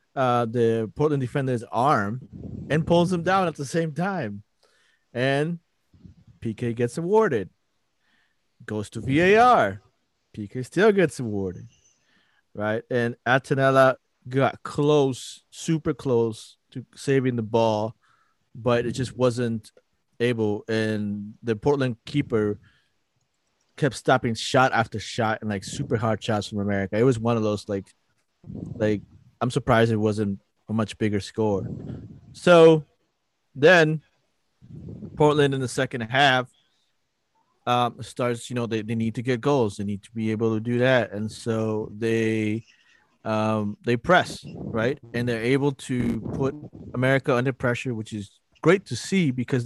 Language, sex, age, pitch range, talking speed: English, male, 30-49, 110-135 Hz, 140 wpm